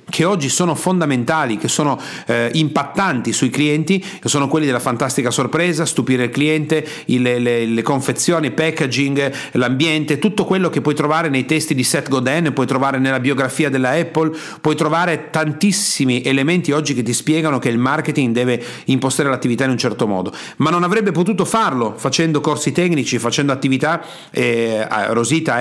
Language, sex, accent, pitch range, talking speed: Italian, male, native, 130-165 Hz, 165 wpm